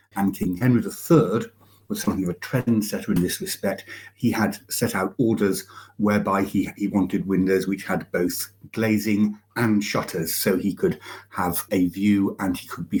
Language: English